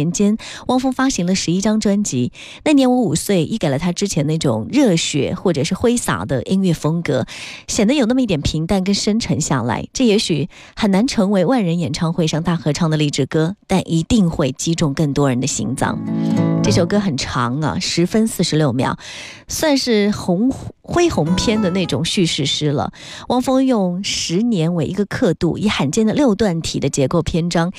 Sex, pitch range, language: female, 150-205 Hz, Chinese